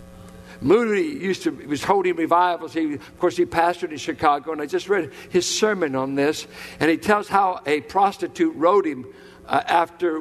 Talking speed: 175 wpm